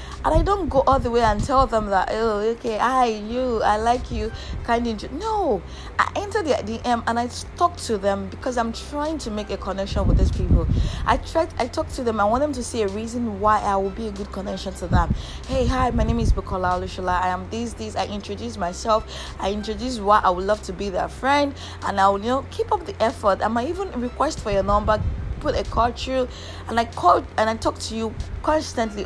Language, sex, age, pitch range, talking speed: English, female, 20-39, 190-255 Hz, 235 wpm